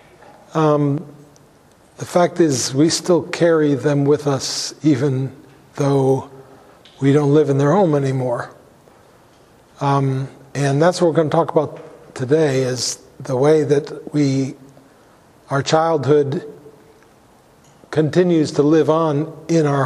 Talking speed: 125 wpm